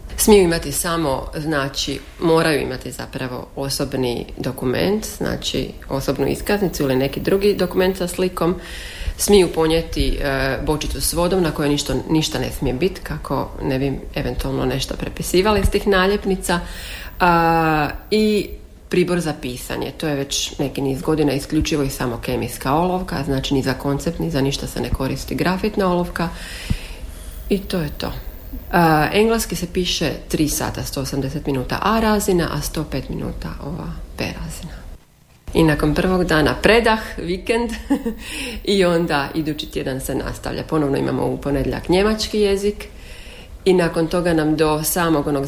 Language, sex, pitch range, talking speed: Croatian, female, 140-185 Hz, 150 wpm